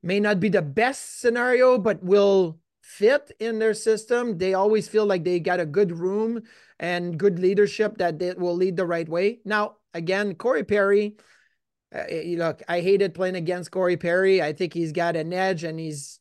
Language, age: English, 30-49